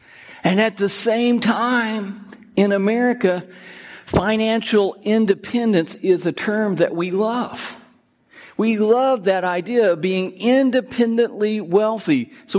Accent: American